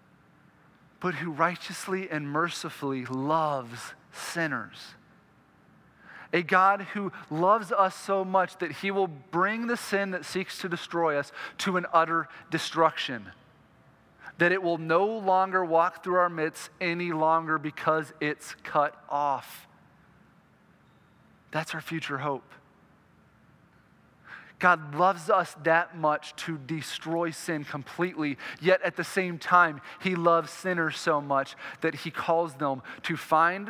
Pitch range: 140-175 Hz